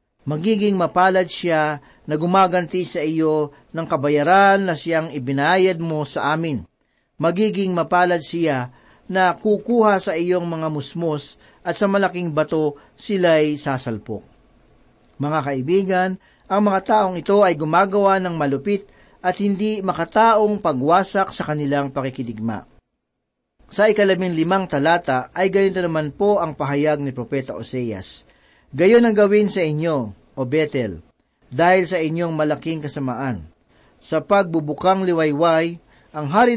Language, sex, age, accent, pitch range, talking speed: Filipino, male, 40-59, native, 145-190 Hz, 125 wpm